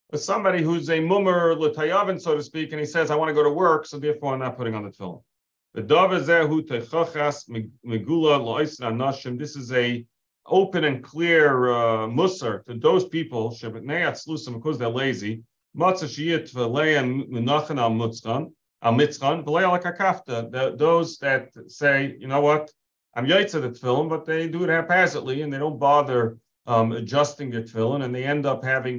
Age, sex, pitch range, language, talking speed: 40-59, male, 120-155 Hz, English, 140 wpm